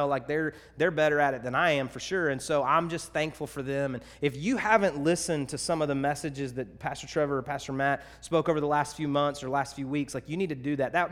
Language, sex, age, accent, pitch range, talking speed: English, male, 30-49, American, 140-165 Hz, 275 wpm